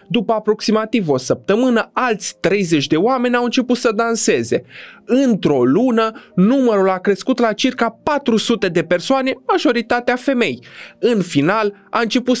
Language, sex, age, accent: Romanian, male, 20-39, native